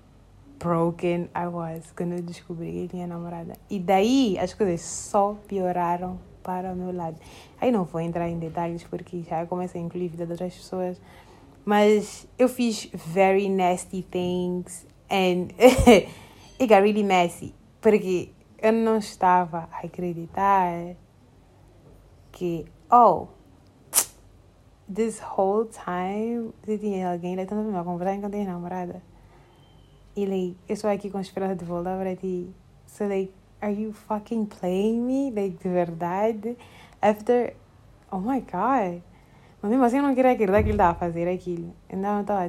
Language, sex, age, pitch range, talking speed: Portuguese, female, 20-39, 175-205 Hz, 145 wpm